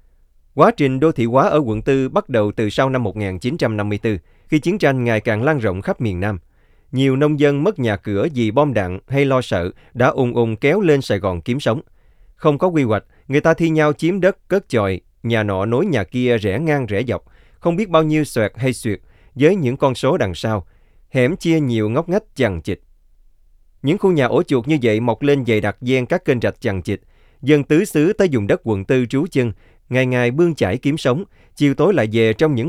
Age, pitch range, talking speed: 20-39, 105-145 Hz, 230 wpm